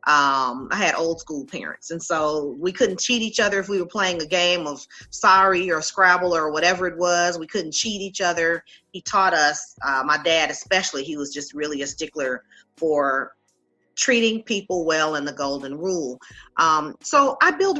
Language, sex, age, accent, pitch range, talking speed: English, female, 40-59, American, 150-195 Hz, 190 wpm